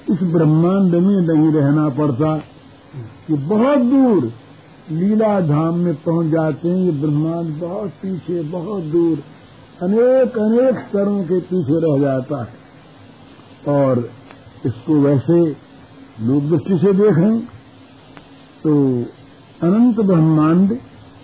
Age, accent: 50-69, native